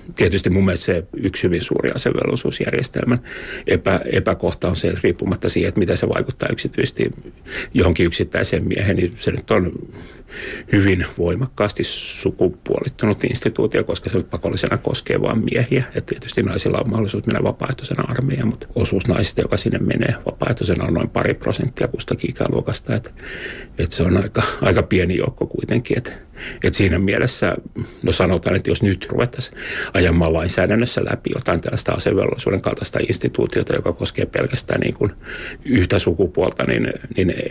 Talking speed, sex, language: 150 wpm, male, Finnish